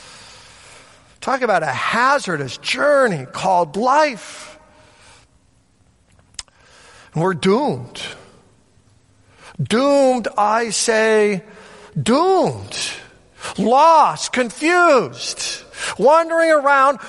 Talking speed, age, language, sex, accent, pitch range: 60 wpm, 50-69, English, male, American, 190-270 Hz